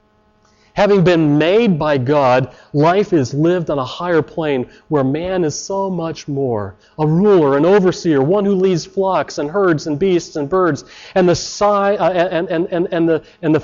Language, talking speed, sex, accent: English, 155 wpm, male, American